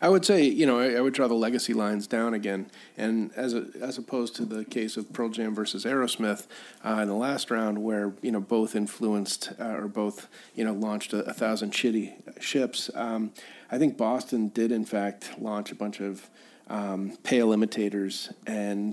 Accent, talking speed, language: American, 200 wpm, English